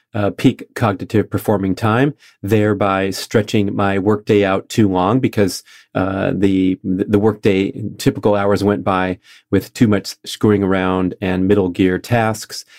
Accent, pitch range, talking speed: American, 95-105 Hz, 140 wpm